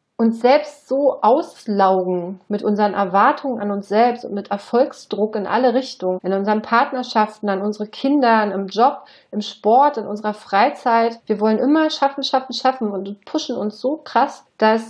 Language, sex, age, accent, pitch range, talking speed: German, female, 30-49, German, 205-250 Hz, 165 wpm